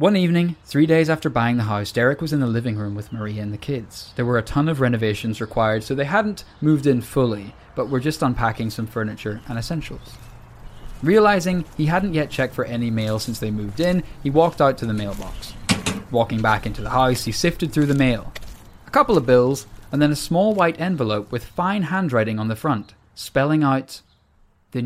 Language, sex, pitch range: English, male, 115-155 Hz